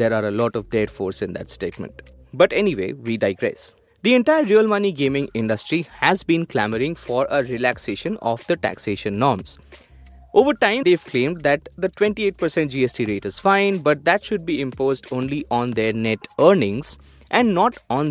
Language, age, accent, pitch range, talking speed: English, 20-39, Indian, 110-170 Hz, 180 wpm